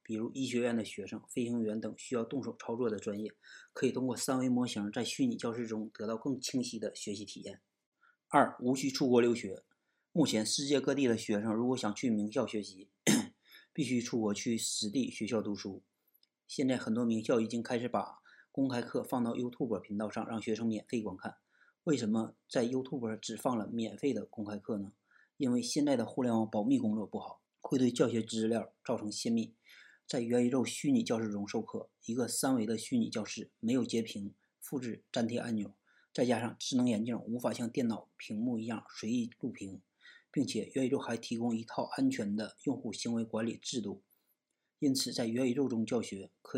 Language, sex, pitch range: Chinese, male, 110-130 Hz